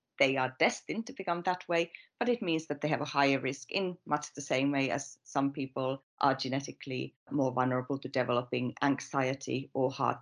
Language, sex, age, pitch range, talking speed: English, female, 40-59, 135-155 Hz, 195 wpm